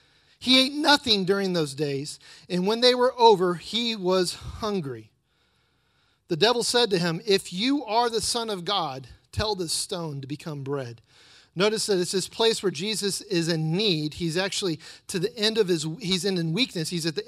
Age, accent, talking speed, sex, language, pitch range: 40-59, American, 190 wpm, male, English, 175-230 Hz